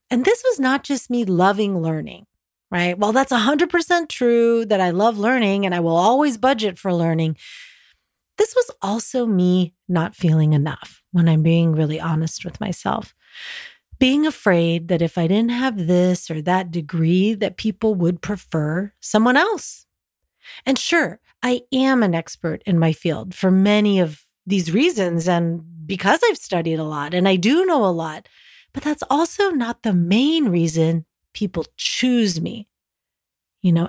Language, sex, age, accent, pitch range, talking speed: English, female, 30-49, American, 175-245 Hz, 165 wpm